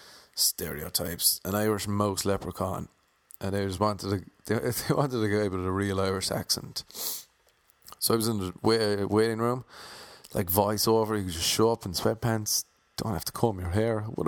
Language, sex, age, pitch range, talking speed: English, male, 30-49, 95-110 Hz, 175 wpm